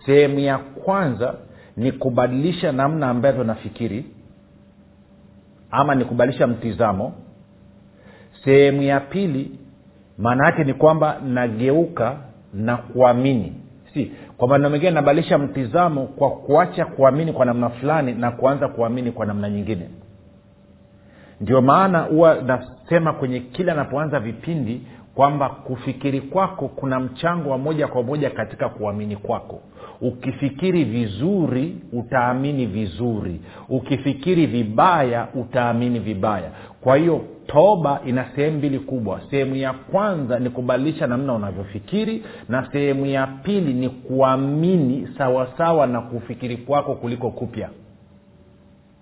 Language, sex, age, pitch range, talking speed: Swahili, male, 50-69, 115-145 Hz, 115 wpm